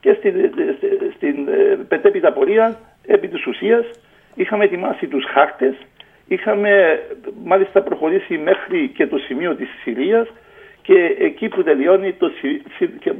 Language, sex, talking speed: Greek, male, 125 wpm